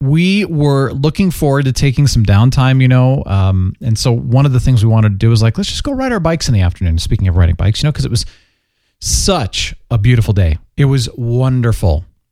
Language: English